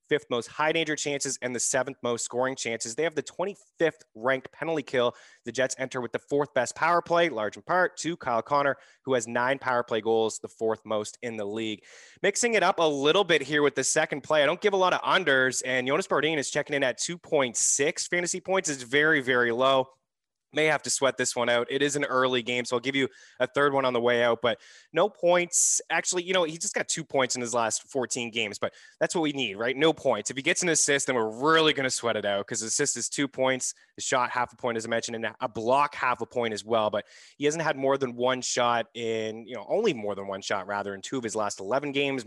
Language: English